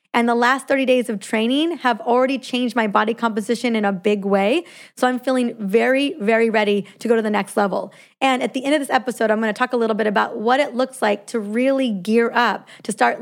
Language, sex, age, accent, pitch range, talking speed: English, female, 20-39, American, 215-260 Hz, 240 wpm